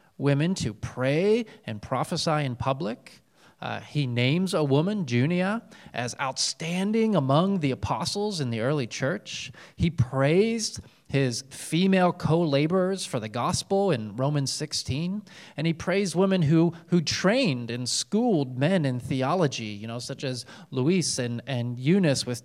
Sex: male